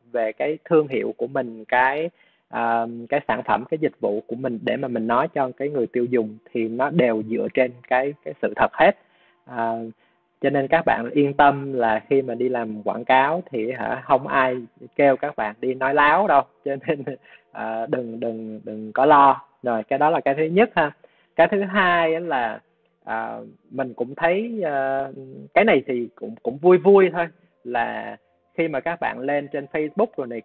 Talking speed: 205 wpm